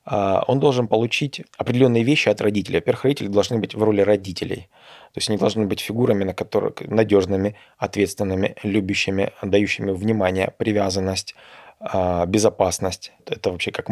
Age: 20-39